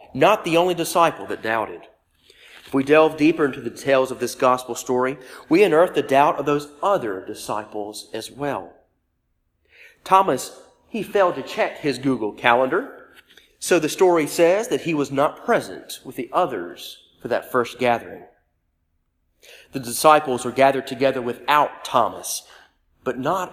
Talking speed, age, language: 155 wpm, 40-59, English